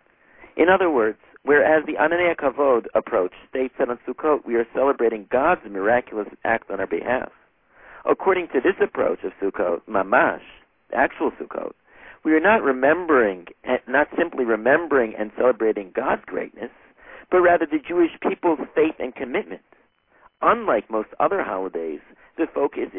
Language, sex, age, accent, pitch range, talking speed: English, male, 50-69, American, 120-170 Hz, 145 wpm